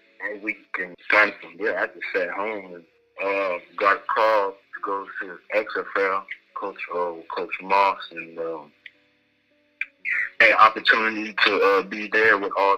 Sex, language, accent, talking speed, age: male, English, American, 160 wpm, 30-49